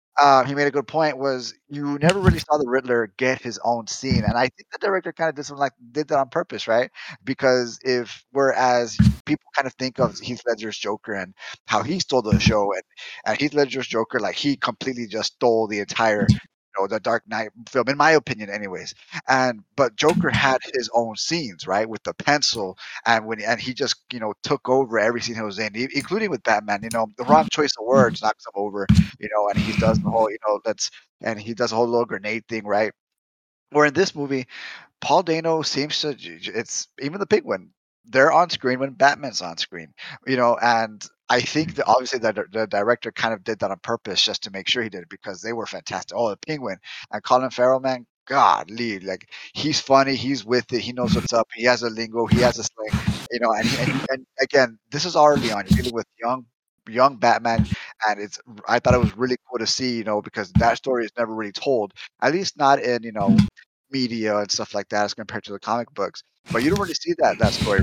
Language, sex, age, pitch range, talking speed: English, male, 30-49, 110-140 Hz, 230 wpm